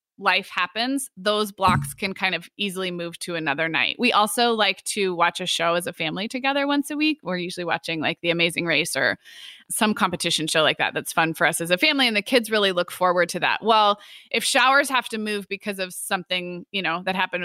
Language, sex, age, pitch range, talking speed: English, female, 20-39, 175-225 Hz, 230 wpm